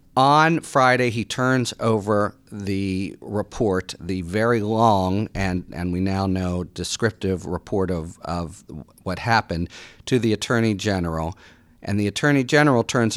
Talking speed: 135 wpm